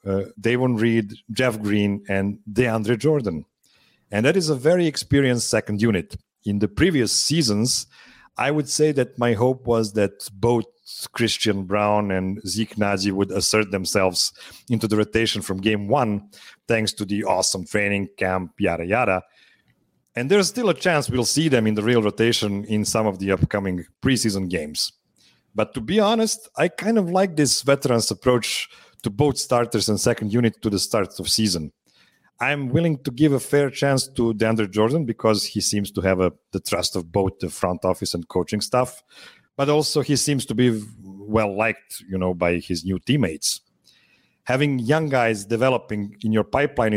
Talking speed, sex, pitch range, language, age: 180 wpm, male, 100-125 Hz, English, 40-59